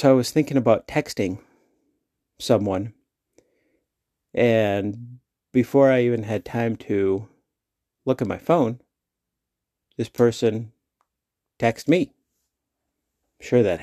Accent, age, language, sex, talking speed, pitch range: American, 50-69, English, male, 110 wpm, 100-125 Hz